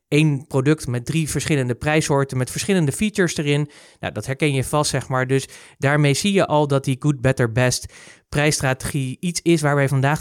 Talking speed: 195 wpm